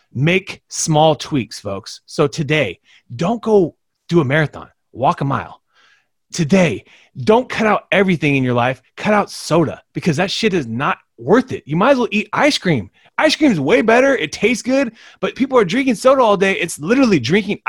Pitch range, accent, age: 145-205 Hz, American, 30-49